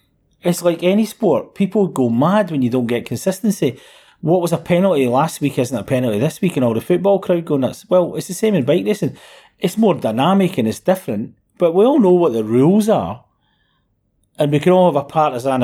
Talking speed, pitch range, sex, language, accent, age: 225 wpm, 120-180 Hz, male, English, British, 40-59